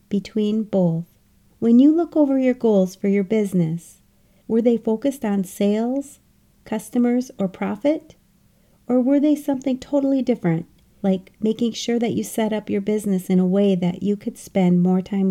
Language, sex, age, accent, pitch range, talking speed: English, female, 40-59, American, 185-250 Hz, 170 wpm